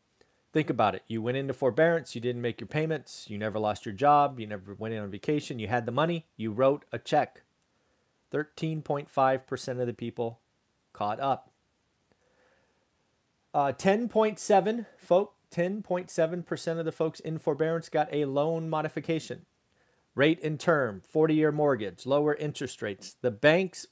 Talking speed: 150 wpm